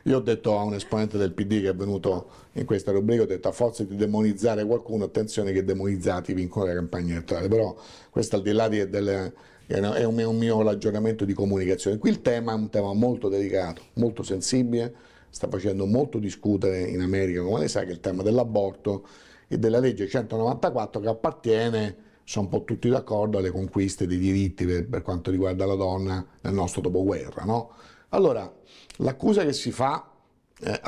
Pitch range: 95-115 Hz